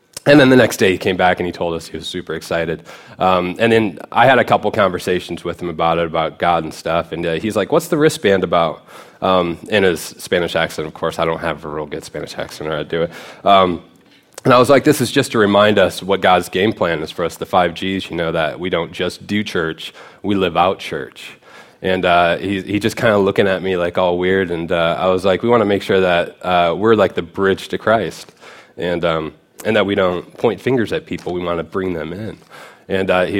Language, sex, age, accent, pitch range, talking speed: English, male, 20-39, American, 90-120 Hz, 255 wpm